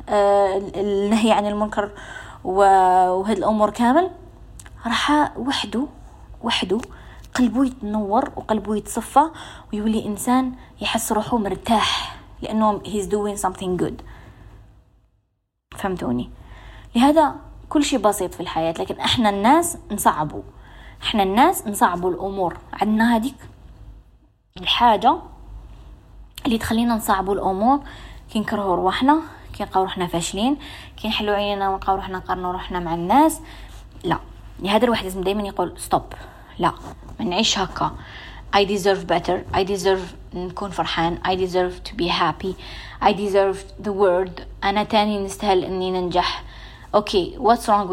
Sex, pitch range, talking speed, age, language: female, 185-235 Hz, 120 wpm, 20-39, Arabic